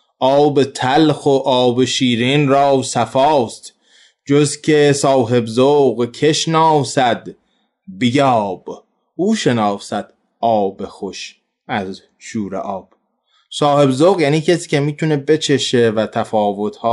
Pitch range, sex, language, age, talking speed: 120-145 Hz, male, Persian, 20-39, 105 wpm